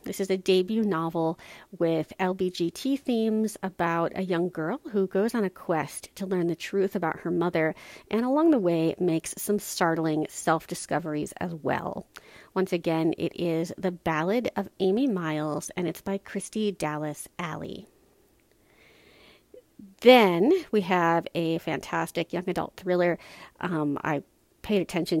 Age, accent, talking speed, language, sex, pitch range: 40-59, American, 145 wpm, English, female, 165-205 Hz